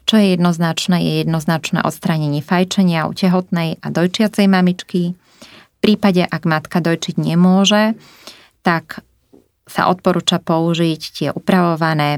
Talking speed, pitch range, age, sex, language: 120 wpm, 155-180 Hz, 20-39, female, Slovak